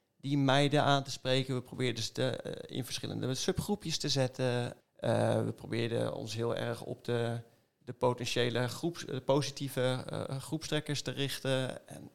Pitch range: 120-145 Hz